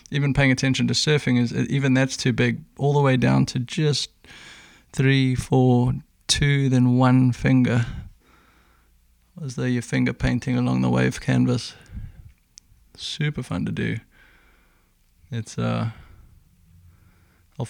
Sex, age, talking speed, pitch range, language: male, 20-39, 130 wpm, 115-140 Hz, English